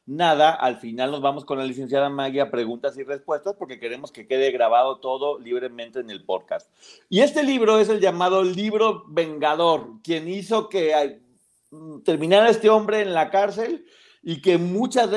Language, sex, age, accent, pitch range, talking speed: Spanish, male, 40-59, Mexican, 130-195 Hz, 170 wpm